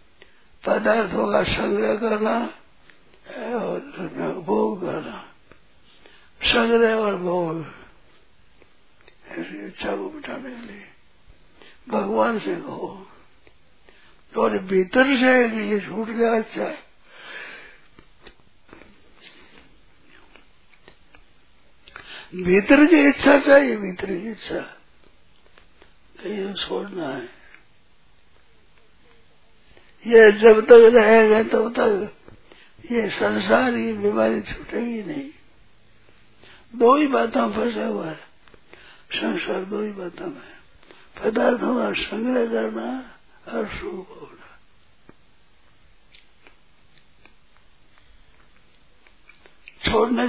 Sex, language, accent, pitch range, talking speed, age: male, Hindi, native, 185-250 Hz, 80 wpm, 60-79